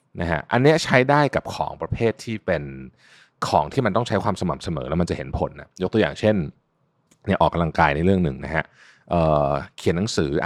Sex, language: male, Thai